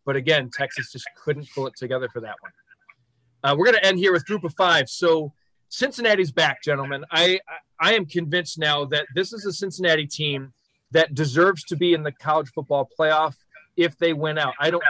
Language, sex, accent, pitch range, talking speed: English, male, American, 150-185 Hz, 210 wpm